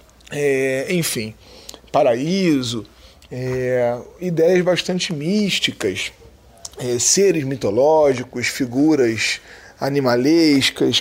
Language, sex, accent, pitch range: Portuguese, male, Brazilian, 135-195 Hz